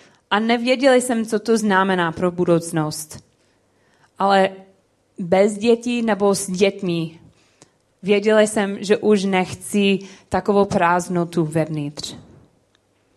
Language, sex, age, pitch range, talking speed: Czech, female, 20-39, 180-210 Hz, 100 wpm